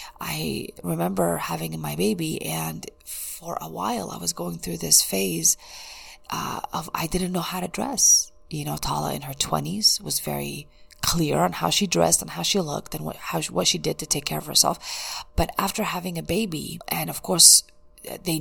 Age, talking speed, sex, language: 30-49, 190 wpm, female, English